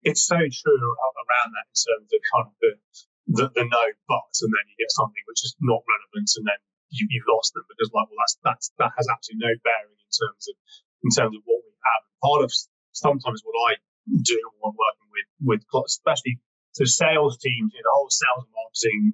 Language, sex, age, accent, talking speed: English, male, 30-49, British, 215 wpm